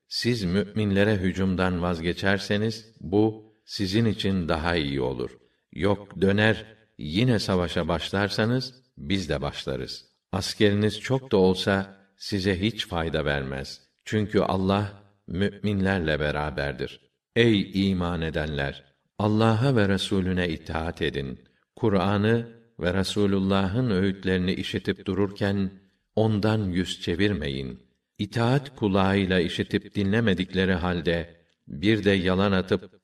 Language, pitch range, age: Turkish, 90-105 Hz, 50-69